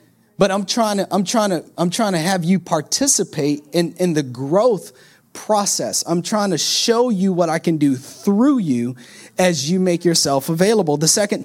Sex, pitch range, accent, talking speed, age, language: male, 150-190 Hz, American, 190 wpm, 30-49, English